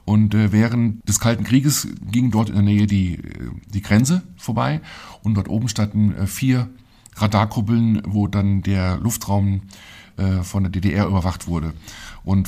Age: 50-69